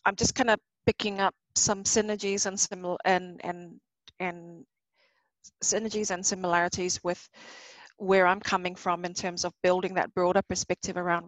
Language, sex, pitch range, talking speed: English, female, 185-210 Hz, 155 wpm